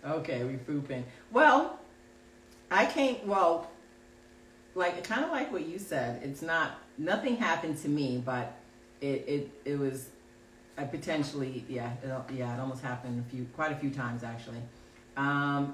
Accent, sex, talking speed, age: American, female, 155 wpm, 40-59